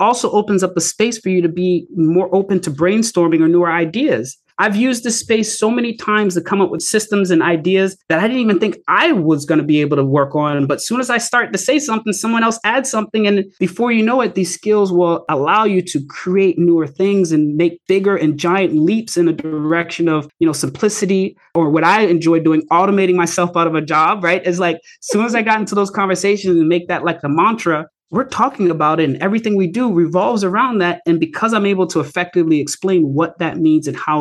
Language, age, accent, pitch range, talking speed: English, 30-49, American, 160-205 Hz, 235 wpm